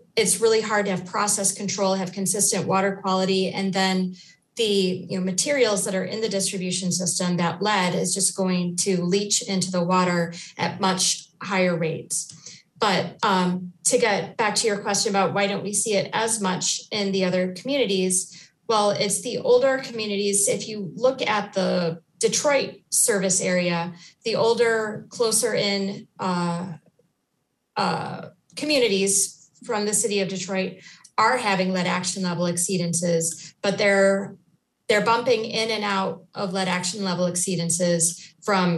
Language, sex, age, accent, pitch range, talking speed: English, female, 30-49, American, 180-210 Hz, 155 wpm